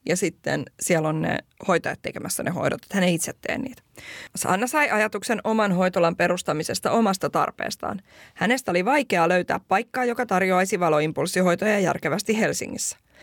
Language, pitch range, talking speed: Finnish, 180-235 Hz, 150 wpm